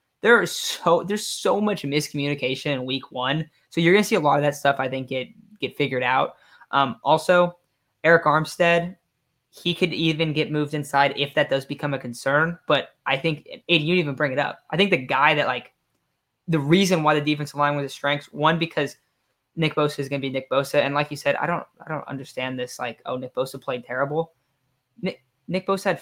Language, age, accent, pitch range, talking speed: English, 10-29, American, 140-165 Hz, 215 wpm